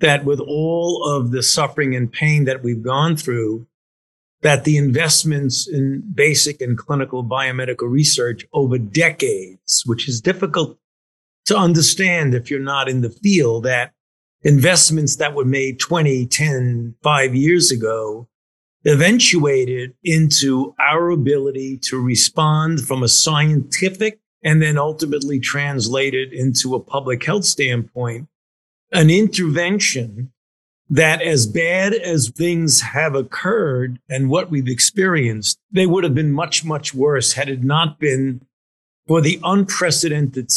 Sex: male